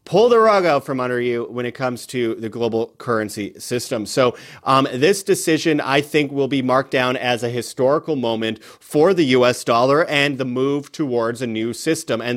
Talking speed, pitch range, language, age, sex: 200 wpm, 115-135 Hz, English, 30-49, male